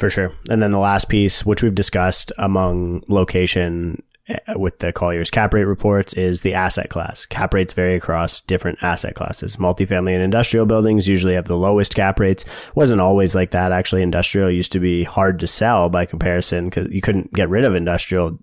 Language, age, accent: English, 30-49, American